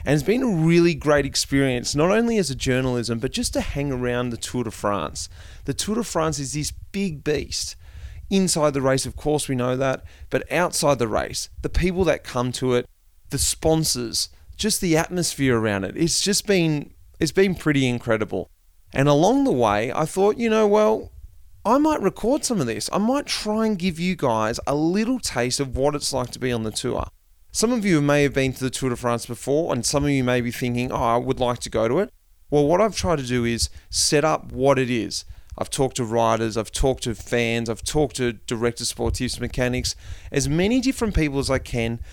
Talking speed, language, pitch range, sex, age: 220 wpm, English, 115-155 Hz, male, 30-49